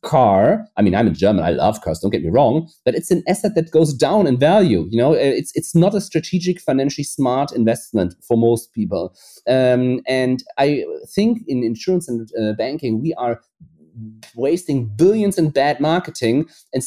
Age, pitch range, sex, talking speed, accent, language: 30-49, 120-160 Hz, male, 185 wpm, German, English